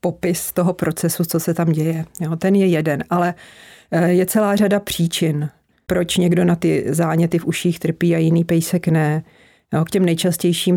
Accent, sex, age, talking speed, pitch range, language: native, female, 40-59, 165 wpm, 150-170 Hz, Czech